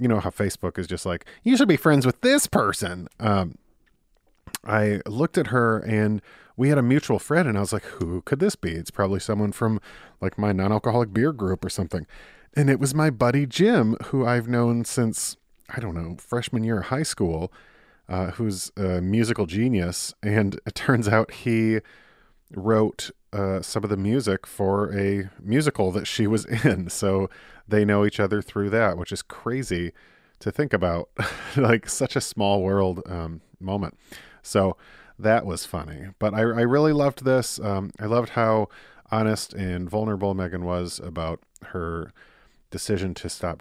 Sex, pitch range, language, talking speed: male, 95-115 Hz, English, 180 wpm